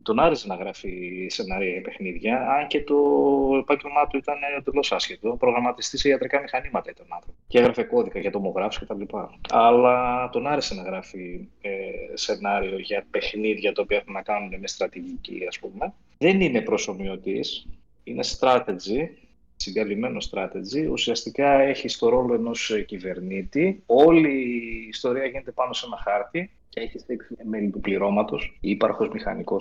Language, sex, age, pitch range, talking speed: Greek, male, 20-39, 105-150 Hz, 150 wpm